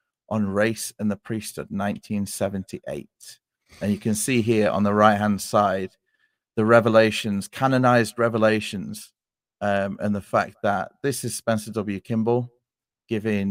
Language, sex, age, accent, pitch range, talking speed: English, male, 30-49, British, 100-120 Hz, 140 wpm